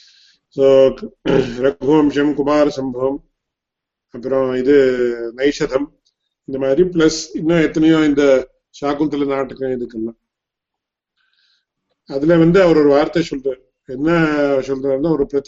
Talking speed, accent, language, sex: 45 wpm, Indian, English, male